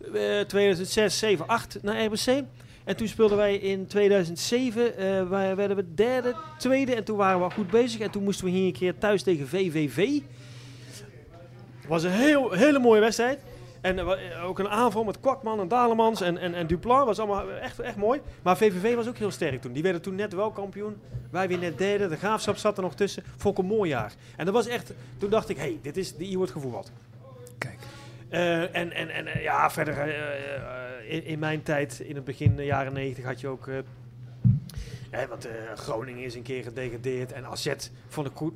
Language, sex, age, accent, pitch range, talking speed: Dutch, male, 30-49, Dutch, 130-200 Hz, 210 wpm